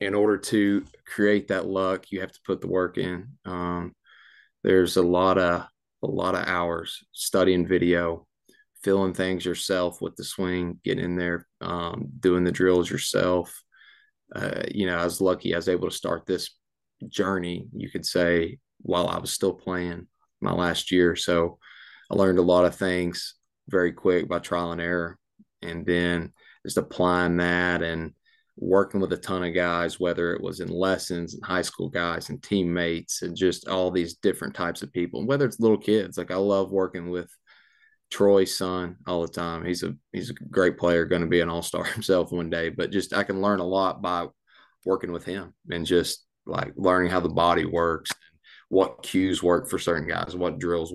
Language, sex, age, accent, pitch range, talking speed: English, male, 20-39, American, 85-95 Hz, 190 wpm